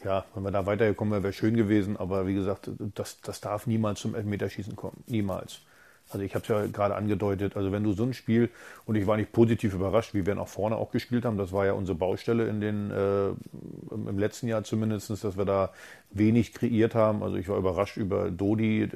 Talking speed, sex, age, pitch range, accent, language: 220 wpm, male, 40-59, 100-115 Hz, German, German